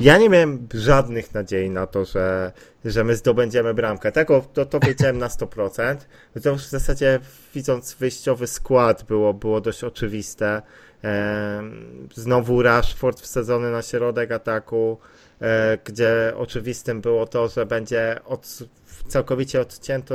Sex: male